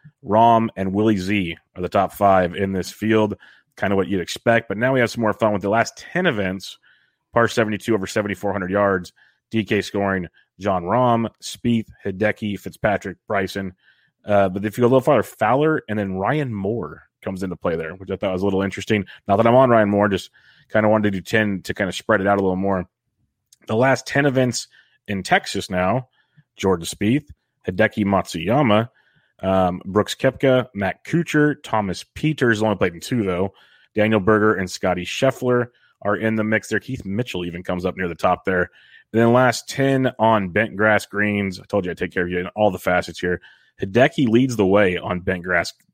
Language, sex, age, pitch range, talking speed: English, male, 30-49, 95-115 Hz, 200 wpm